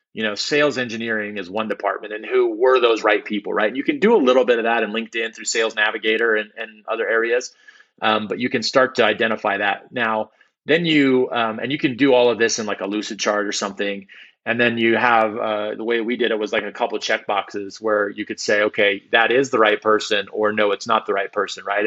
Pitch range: 105-125 Hz